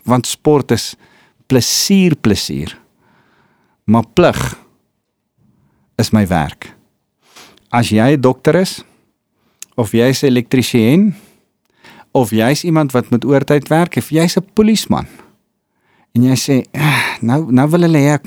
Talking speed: 130 wpm